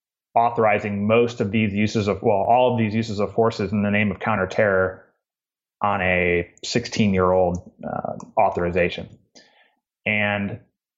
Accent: American